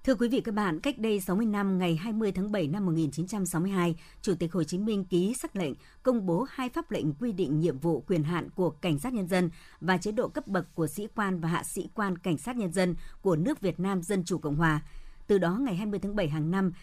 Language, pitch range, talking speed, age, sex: Vietnamese, 160-205 Hz, 255 wpm, 60-79, male